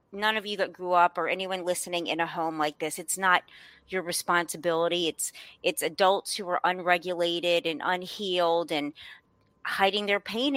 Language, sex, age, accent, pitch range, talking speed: English, female, 30-49, American, 170-210 Hz, 170 wpm